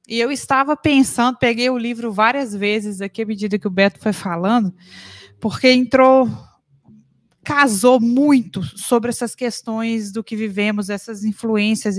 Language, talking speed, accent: Portuguese, 145 wpm, Brazilian